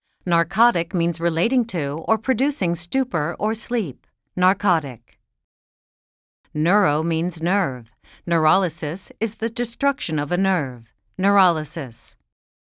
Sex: female